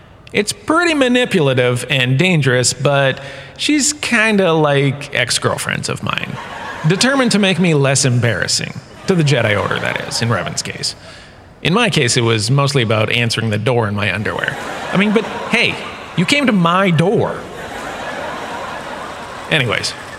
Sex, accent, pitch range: male, American, 120-165 Hz